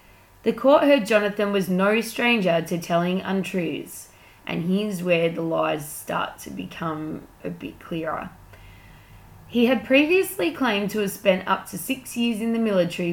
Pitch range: 170-220 Hz